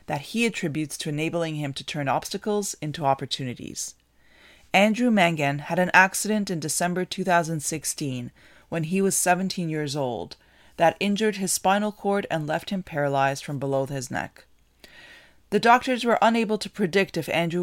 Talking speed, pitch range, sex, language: 155 wpm, 145-185 Hz, female, English